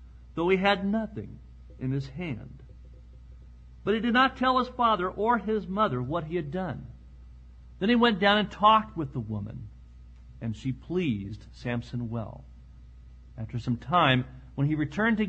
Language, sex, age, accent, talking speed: English, male, 50-69, American, 165 wpm